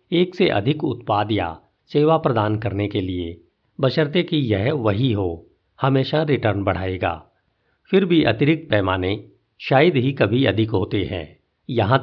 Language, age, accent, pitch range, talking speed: Hindi, 50-69, native, 100-140 Hz, 145 wpm